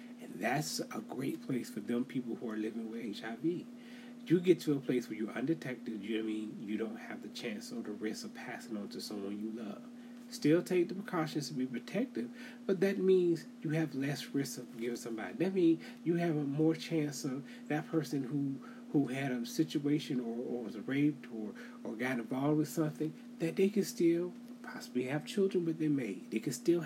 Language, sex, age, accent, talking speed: English, male, 30-49, American, 210 wpm